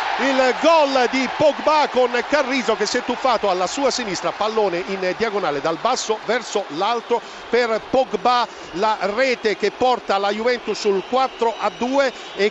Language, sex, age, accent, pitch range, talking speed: Italian, male, 50-69, native, 220-280 Hz, 160 wpm